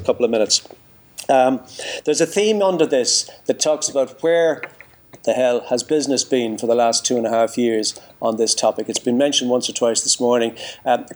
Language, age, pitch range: English, 50-69, 125-155 Hz